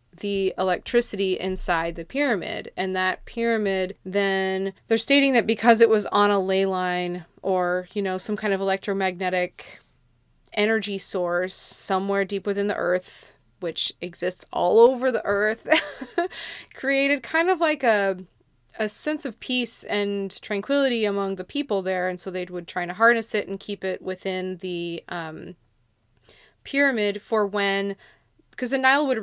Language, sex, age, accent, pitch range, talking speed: English, female, 20-39, American, 185-220 Hz, 155 wpm